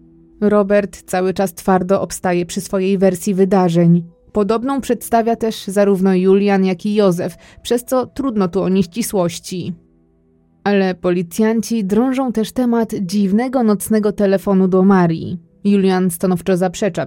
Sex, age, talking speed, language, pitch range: female, 20-39, 125 wpm, Polish, 185-215 Hz